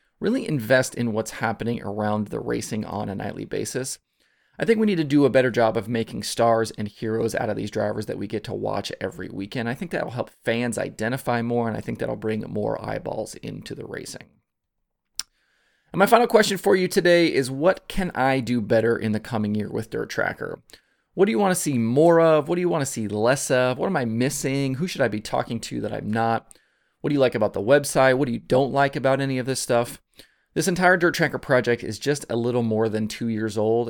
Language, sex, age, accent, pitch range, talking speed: English, male, 30-49, American, 110-140 Hz, 240 wpm